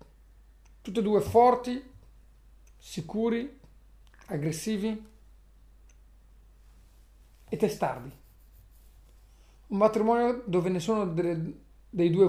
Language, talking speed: Italian, 70 wpm